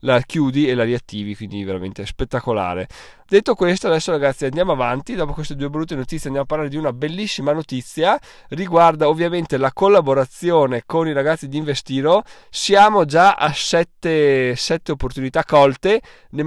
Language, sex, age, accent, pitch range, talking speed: Italian, male, 20-39, native, 125-155 Hz, 155 wpm